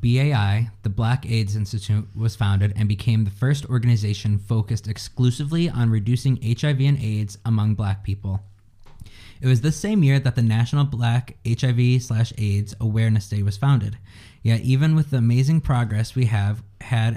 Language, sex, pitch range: English, male, 105-125 Hz